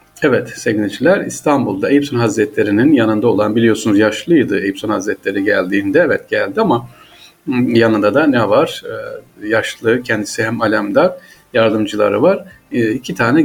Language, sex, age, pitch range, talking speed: Turkish, male, 50-69, 115-145 Hz, 135 wpm